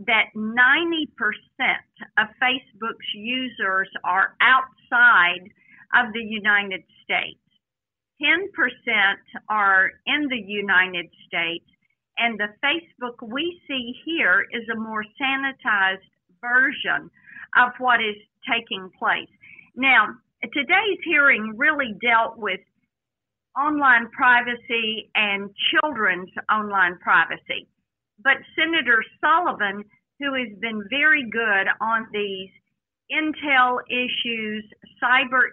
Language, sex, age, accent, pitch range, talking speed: English, female, 50-69, American, 205-260 Hz, 100 wpm